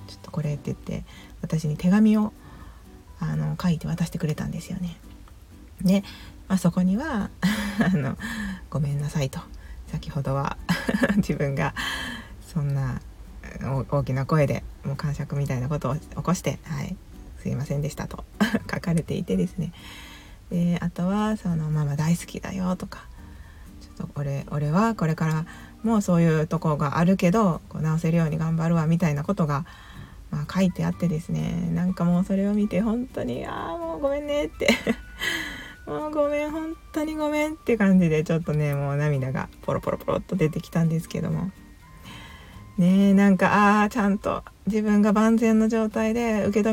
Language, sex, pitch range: Japanese, female, 150-195 Hz